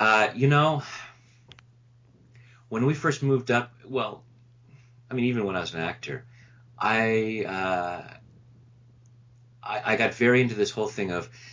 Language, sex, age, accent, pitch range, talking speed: English, male, 30-49, American, 90-120 Hz, 145 wpm